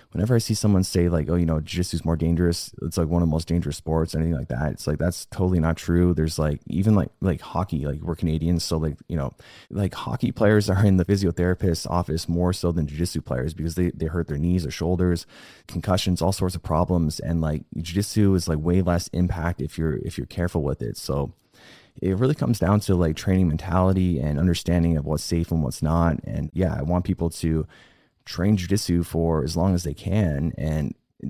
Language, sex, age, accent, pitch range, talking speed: English, male, 20-39, American, 80-95 Hz, 225 wpm